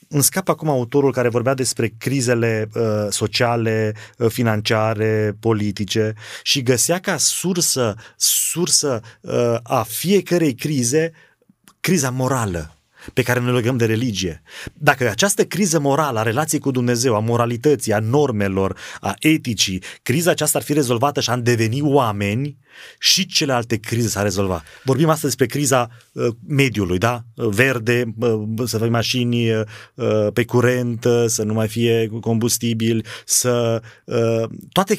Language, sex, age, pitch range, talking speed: Romanian, male, 30-49, 110-140 Hz, 140 wpm